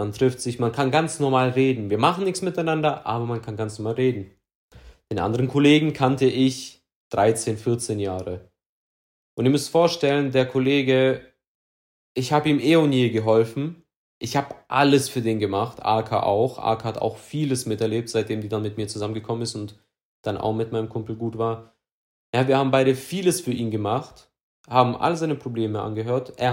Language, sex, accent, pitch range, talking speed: German, male, German, 110-135 Hz, 185 wpm